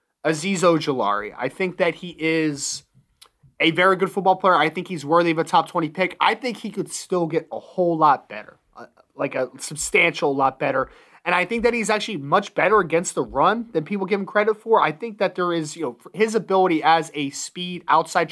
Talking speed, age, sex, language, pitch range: 215 wpm, 20-39, male, English, 155-185 Hz